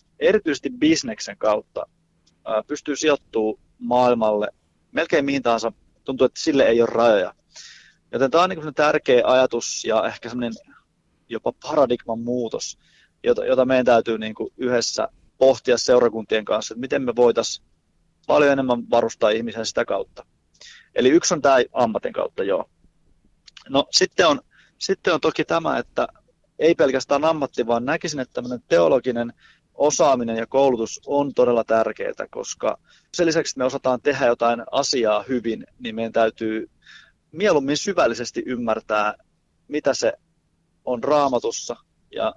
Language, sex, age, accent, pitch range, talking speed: Finnish, male, 30-49, native, 115-145 Hz, 135 wpm